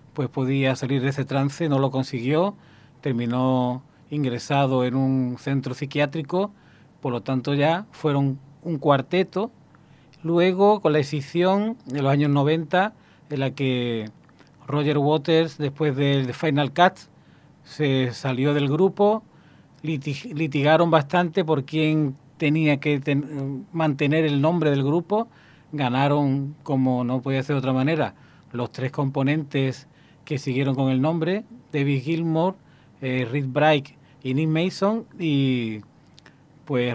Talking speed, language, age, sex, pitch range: 130 wpm, Spanish, 40-59, male, 130-155 Hz